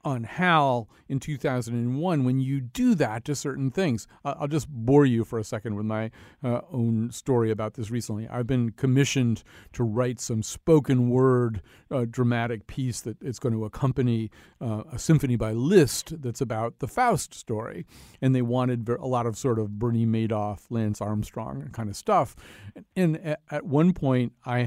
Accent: American